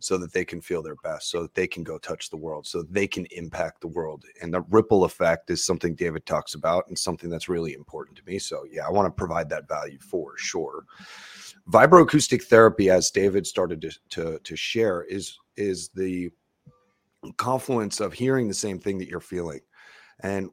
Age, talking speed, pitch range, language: 30-49, 200 wpm, 90-105 Hz, English